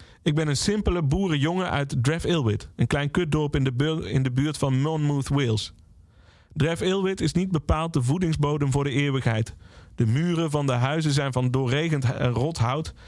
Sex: male